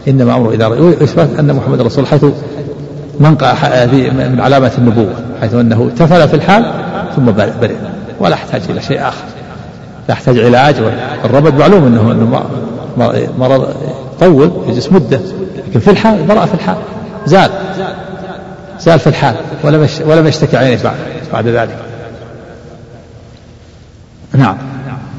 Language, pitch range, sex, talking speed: Arabic, 115-150 Hz, male, 125 wpm